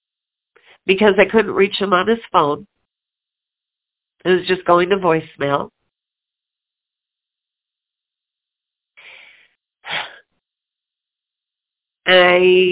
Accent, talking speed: American, 70 wpm